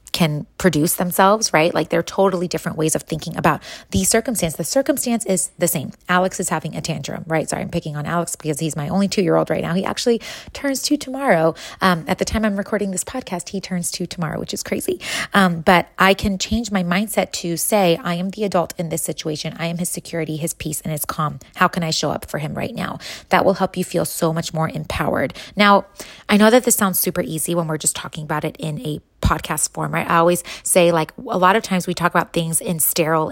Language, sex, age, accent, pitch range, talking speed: English, female, 30-49, American, 160-190 Hz, 240 wpm